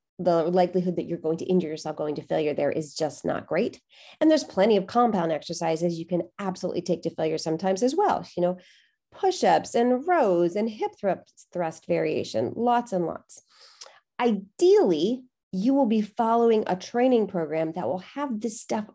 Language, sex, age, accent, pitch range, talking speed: English, female, 30-49, American, 170-225 Hz, 175 wpm